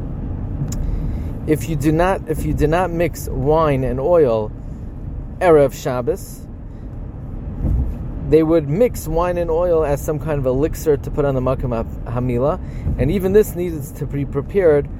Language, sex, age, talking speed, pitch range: English, male, 30-49, 150 wpm, 125-160 Hz